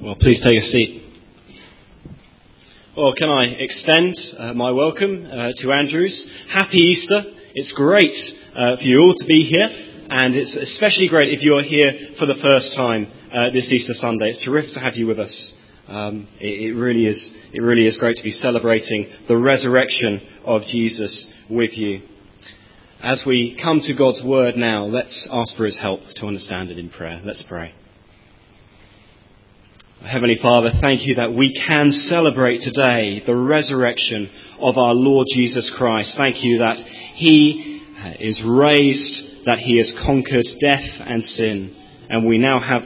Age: 30-49